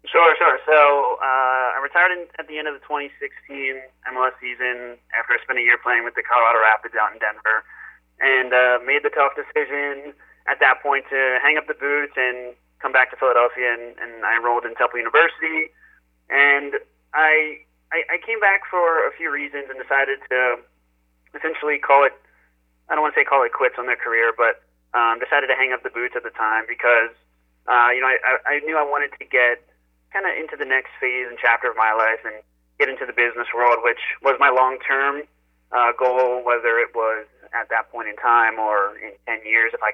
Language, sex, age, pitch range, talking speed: English, male, 30-49, 115-140 Hz, 210 wpm